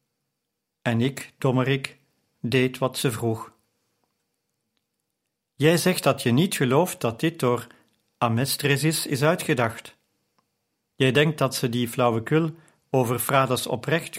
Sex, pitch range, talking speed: male, 115-145 Hz, 120 wpm